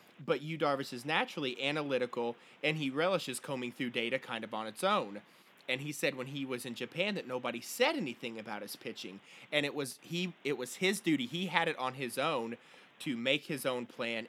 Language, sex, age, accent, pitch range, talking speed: English, male, 30-49, American, 120-170 Hz, 215 wpm